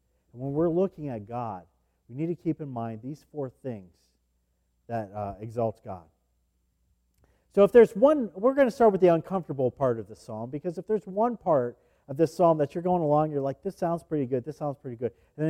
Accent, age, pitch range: American, 50-69, 115-170 Hz